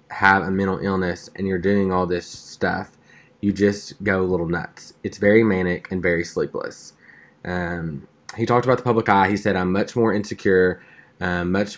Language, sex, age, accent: English, male, 20-39, American